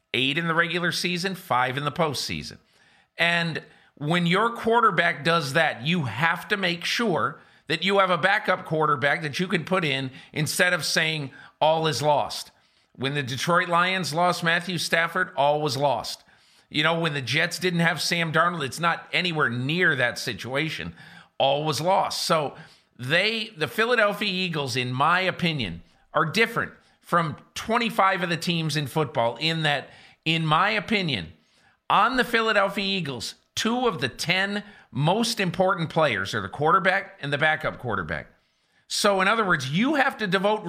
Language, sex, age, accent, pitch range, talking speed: English, male, 50-69, American, 150-190 Hz, 165 wpm